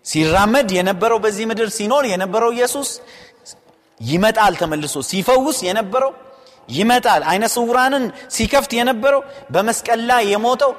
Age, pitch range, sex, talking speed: 30-49, 155-225 Hz, male, 100 wpm